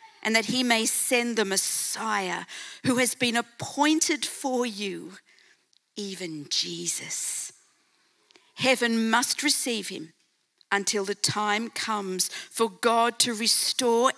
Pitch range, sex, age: 190-245 Hz, female, 50-69